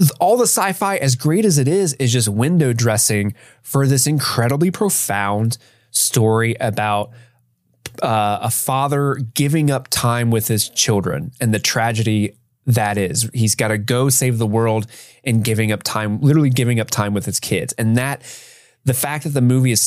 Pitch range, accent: 110-135 Hz, American